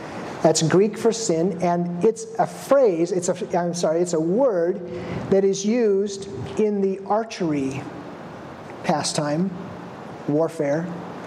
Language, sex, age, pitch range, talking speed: English, male, 40-59, 170-215 Hz, 120 wpm